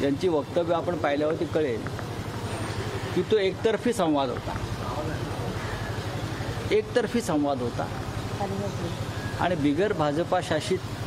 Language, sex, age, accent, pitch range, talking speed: Marathi, male, 60-79, native, 145-225 Hz, 90 wpm